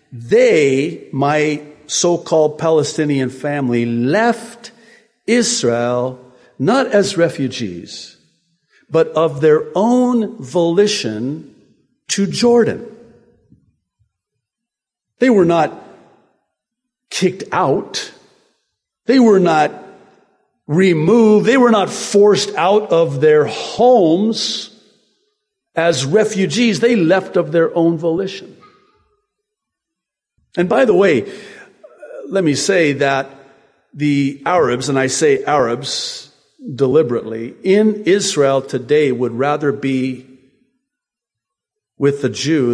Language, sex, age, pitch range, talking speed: English, male, 50-69, 140-230 Hz, 95 wpm